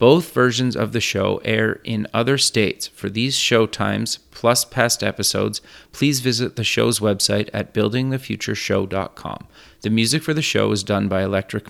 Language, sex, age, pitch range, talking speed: English, male, 30-49, 100-120 Hz, 165 wpm